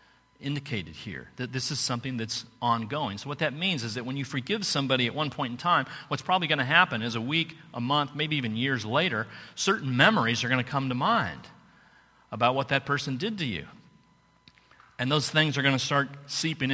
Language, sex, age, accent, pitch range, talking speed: English, male, 40-59, American, 120-150 Hz, 215 wpm